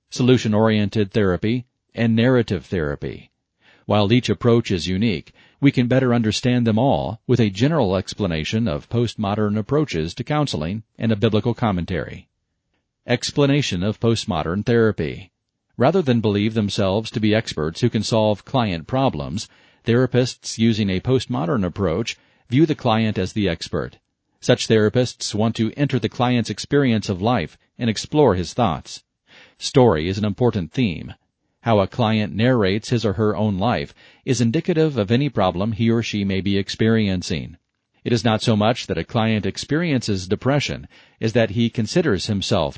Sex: male